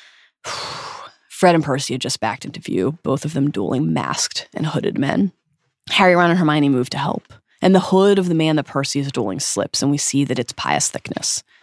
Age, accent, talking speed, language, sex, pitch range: 20-39, American, 210 wpm, English, female, 135-195 Hz